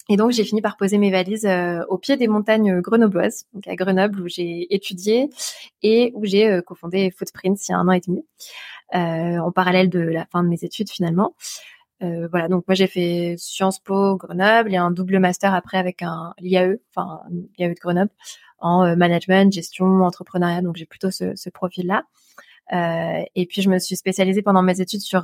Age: 20-39